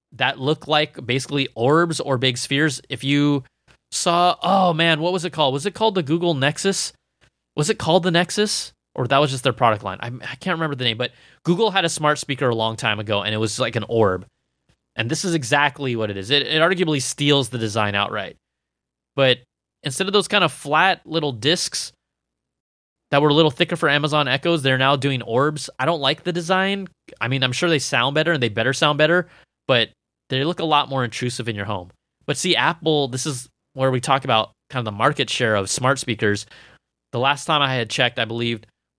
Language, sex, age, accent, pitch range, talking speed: English, male, 20-39, American, 115-155 Hz, 220 wpm